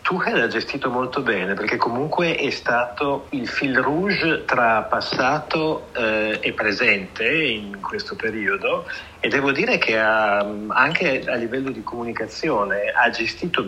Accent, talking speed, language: native, 140 wpm, Italian